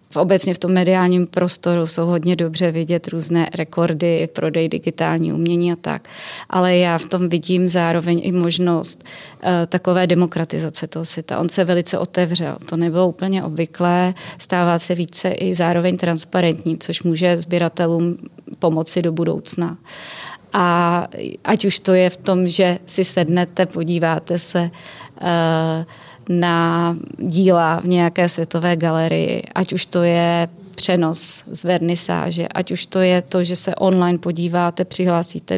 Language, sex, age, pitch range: Czech, female, 30-49, 170-180 Hz